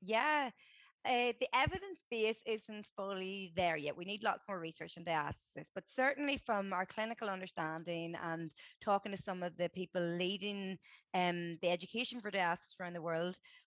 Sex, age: female, 20-39